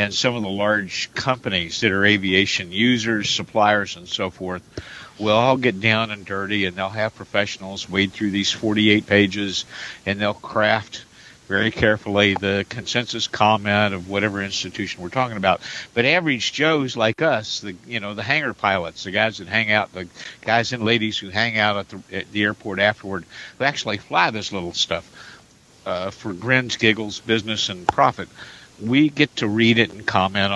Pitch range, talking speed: 100-115 Hz, 185 wpm